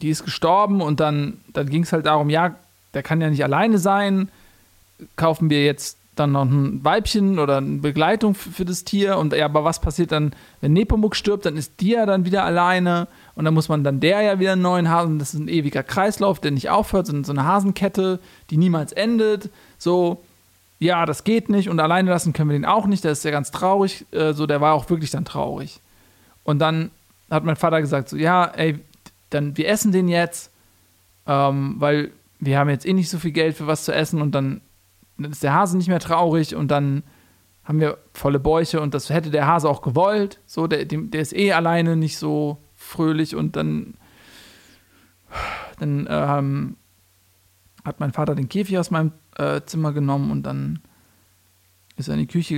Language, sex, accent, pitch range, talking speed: German, male, German, 135-175 Hz, 200 wpm